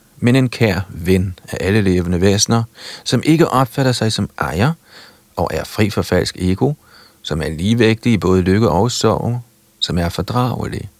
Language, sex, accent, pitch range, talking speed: Danish, male, native, 90-115 Hz, 170 wpm